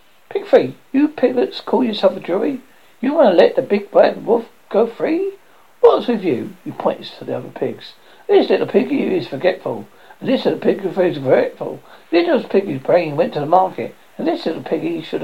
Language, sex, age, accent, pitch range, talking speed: English, male, 60-79, British, 225-340 Hz, 200 wpm